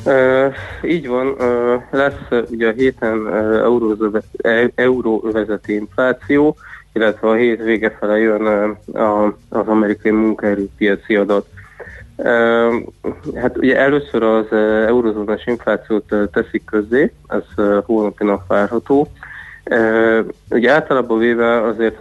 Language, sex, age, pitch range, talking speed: Hungarian, male, 20-39, 105-115 Hz, 110 wpm